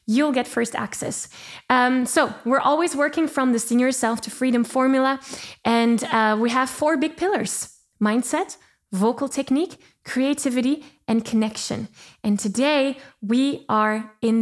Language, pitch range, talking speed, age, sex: English, 220-275 Hz, 140 wpm, 10-29, female